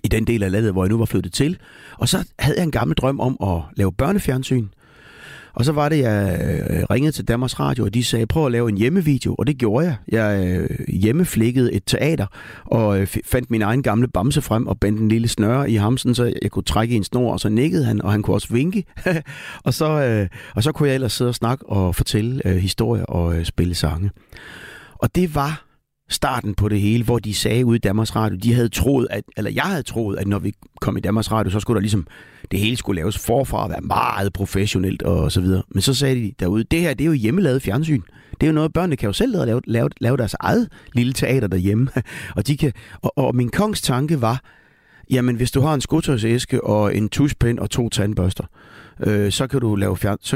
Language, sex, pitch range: Danish, male, 100-130 Hz